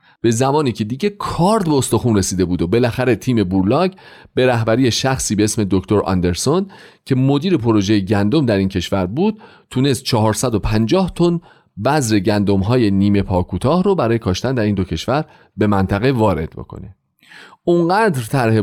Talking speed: 160 wpm